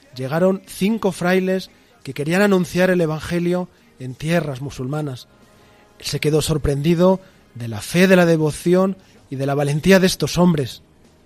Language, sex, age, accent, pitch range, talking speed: Spanish, male, 40-59, Spanish, 135-170 Hz, 145 wpm